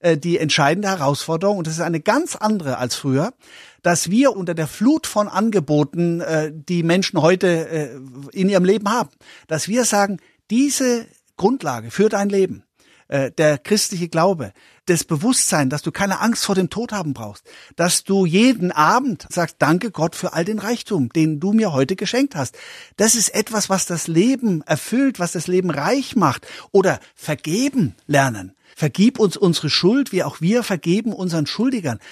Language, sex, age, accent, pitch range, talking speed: German, male, 50-69, German, 160-220 Hz, 165 wpm